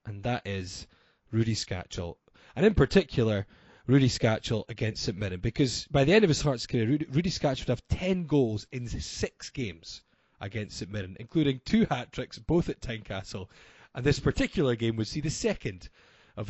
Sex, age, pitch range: male, 20-39, 110-145 Hz